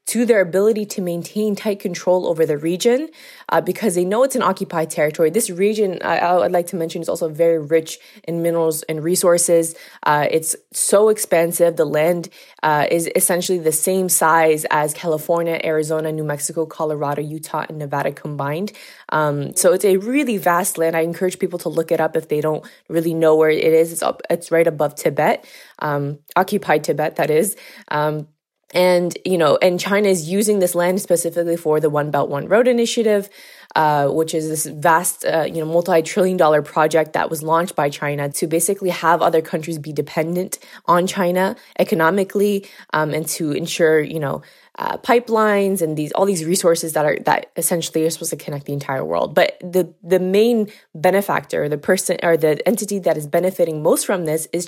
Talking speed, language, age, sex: 190 wpm, English, 20-39, female